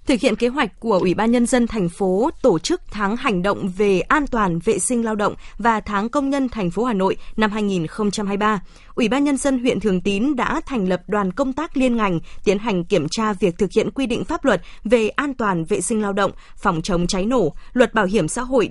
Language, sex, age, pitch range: Vietnamese, female, 20-39, 195-250 Hz